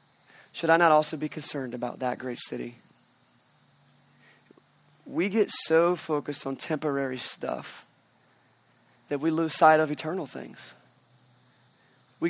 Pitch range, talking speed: 140-185 Hz, 120 wpm